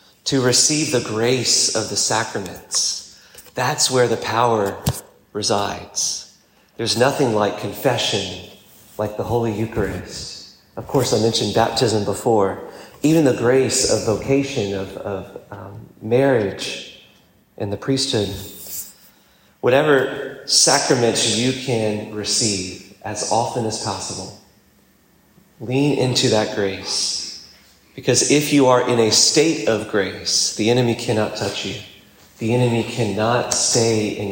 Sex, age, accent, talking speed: male, 30-49, American, 120 wpm